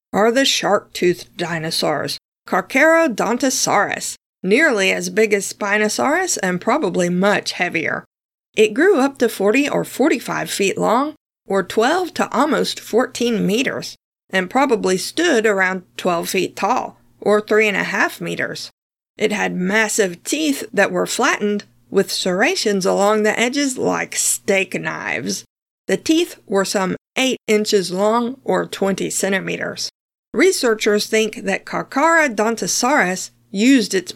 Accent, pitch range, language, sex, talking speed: American, 195-250 Hz, English, female, 130 wpm